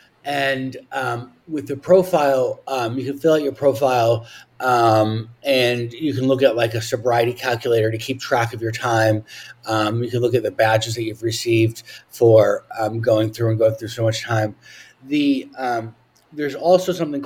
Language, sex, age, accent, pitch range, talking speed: English, male, 30-49, American, 115-145 Hz, 185 wpm